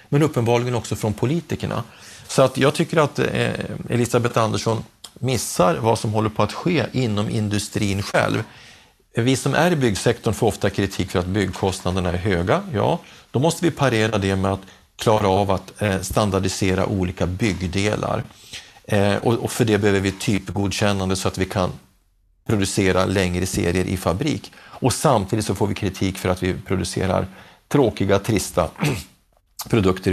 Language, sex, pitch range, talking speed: Swedish, male, 95-120 Hz, 150 wpm